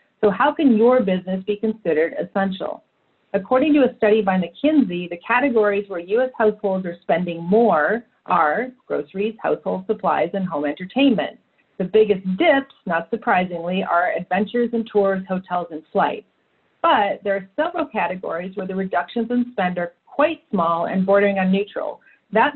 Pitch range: 185-230 Hz